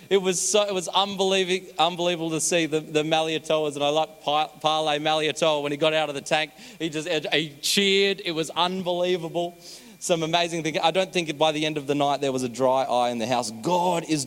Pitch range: 110-150 Hz